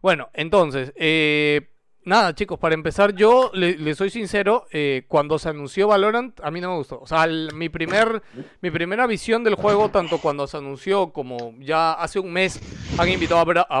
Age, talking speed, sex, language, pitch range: 30-49, 185 wpm, male, Spanish, 135-190 Hz